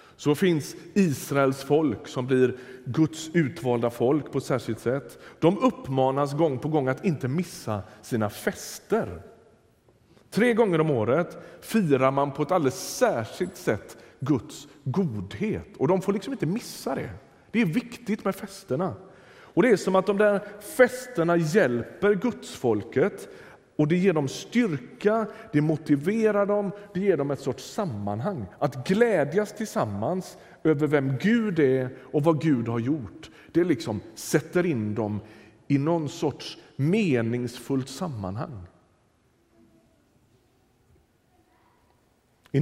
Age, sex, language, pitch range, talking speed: 30-49, male, Swedish, 125-180 Hz, 135 wpm